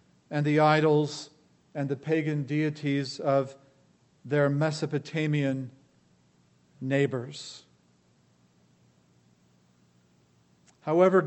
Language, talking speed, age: English, 65 wpm, 50-69